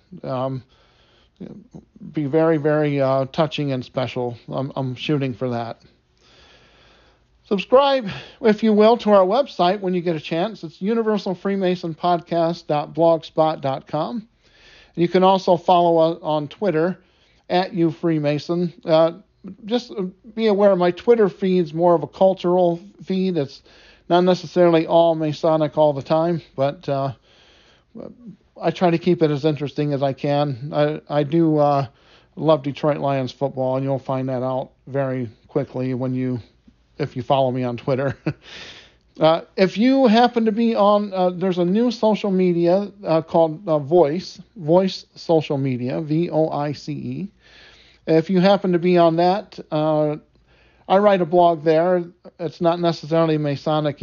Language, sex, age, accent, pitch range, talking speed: English, male, 50-69, American, 150-185 Hz, 145 wpm